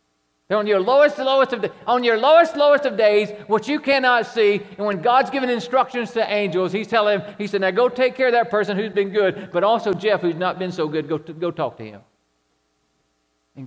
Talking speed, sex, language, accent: 235 wpm, male, English, American